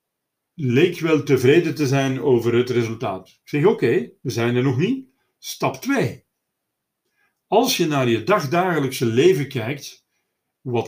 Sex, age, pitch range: male, 50-69, 125-165 Hz